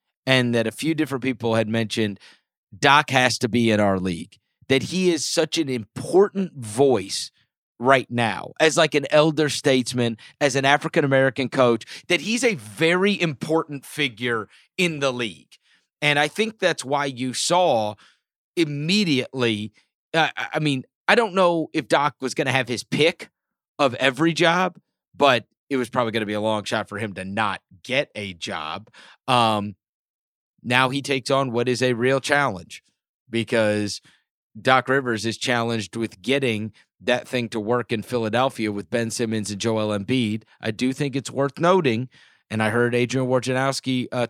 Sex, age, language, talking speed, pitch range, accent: male, 30-49, English, 170 wpm, 115-145 Hz, American